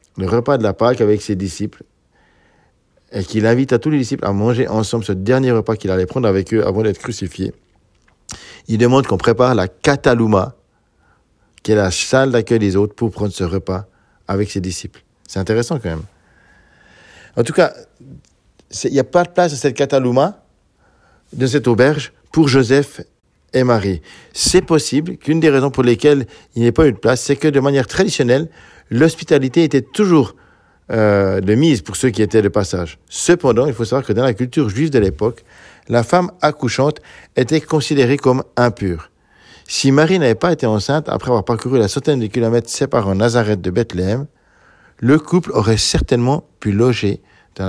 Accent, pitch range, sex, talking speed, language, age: French, 100-140 Hz, male, 180 wpm, French, 50-69